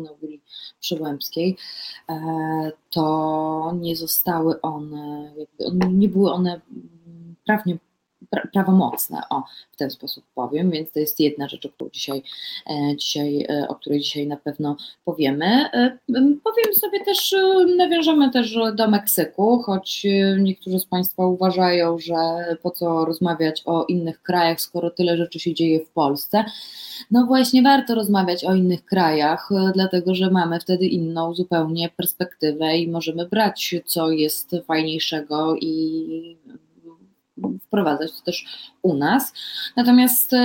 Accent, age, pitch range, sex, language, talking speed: native, 20-39, 155-195 Hz, female, Polish, 120 wpm